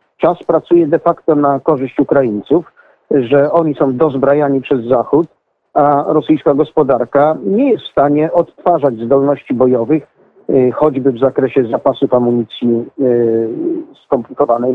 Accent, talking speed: native, 120 wpm